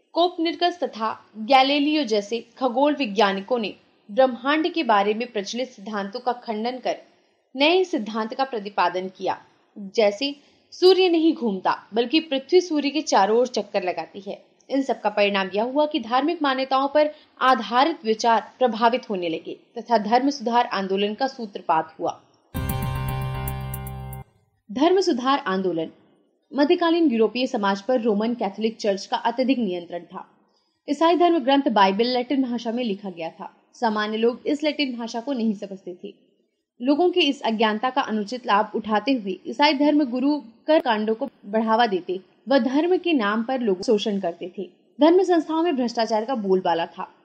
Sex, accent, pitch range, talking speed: female, native, 205-280 Hz, 135 wpm